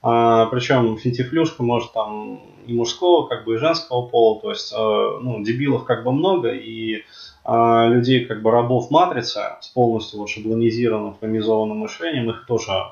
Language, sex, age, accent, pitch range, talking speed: Russian, male, 20-39, native, 115-135 Hz, 160 wpm